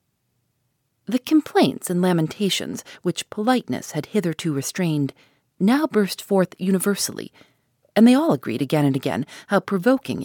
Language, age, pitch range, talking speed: English, 40-59, 135-215 Hz, 130 wpm